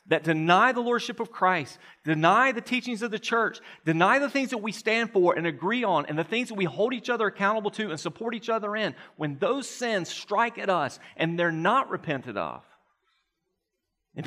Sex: male